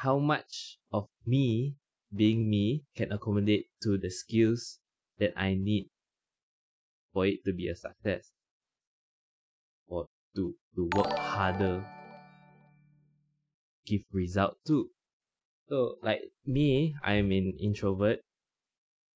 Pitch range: 95-120 Hz